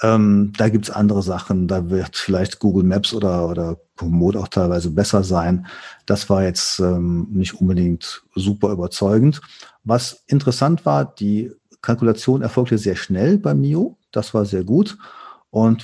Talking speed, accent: 155 wpm, German